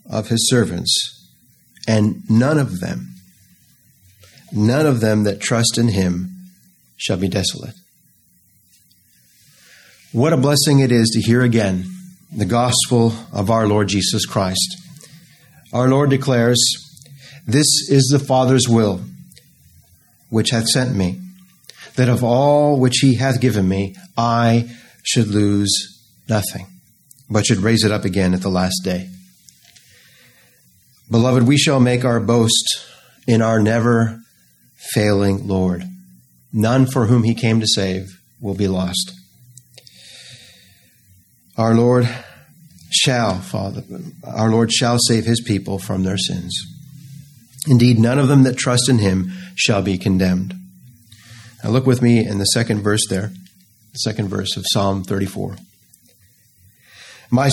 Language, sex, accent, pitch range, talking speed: English, male, American, 95-125 Hz, 130 wpm